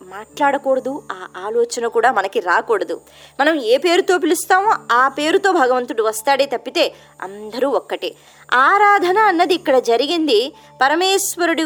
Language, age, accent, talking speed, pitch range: Telugu, 20-39, native, 115 wpm, 230-365 Hz